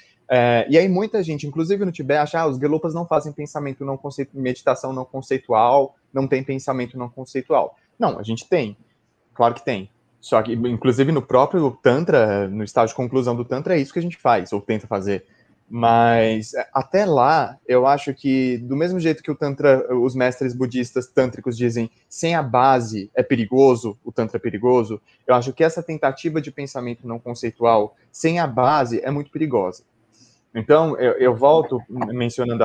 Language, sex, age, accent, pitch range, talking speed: Portuguese, male, 20-39, Brazilian, 115-145 Hz, 185 wpm